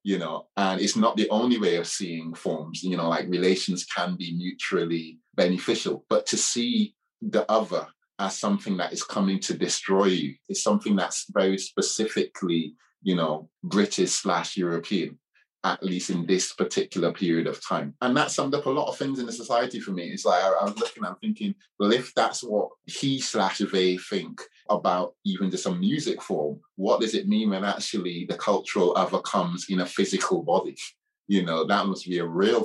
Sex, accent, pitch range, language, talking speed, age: male, British, 90-120 Hz, English, 190 wpm, 20-39